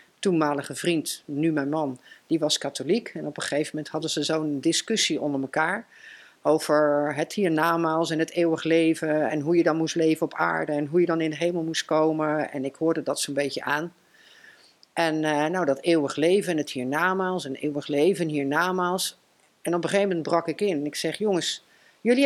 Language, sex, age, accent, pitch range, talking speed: Dutch, female, 50-69, Dutch, 150-190 Hz, 210 wpm